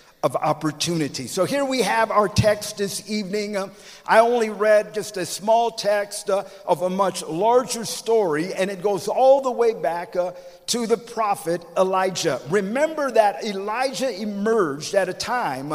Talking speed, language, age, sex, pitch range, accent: 165 wpm, English, 50-69, male, 175-225 Hz, American